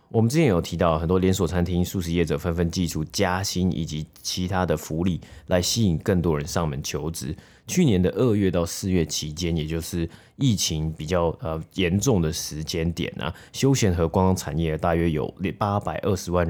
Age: 30-49